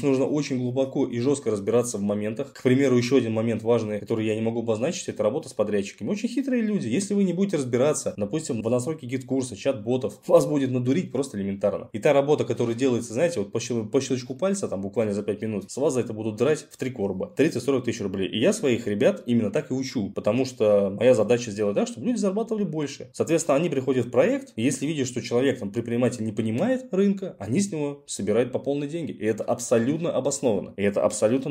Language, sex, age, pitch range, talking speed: Russian, male, 20-39, 105-145 Hz, 220 wpm